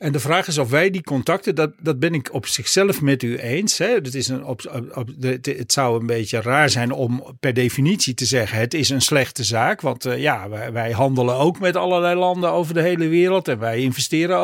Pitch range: 130-170 Hz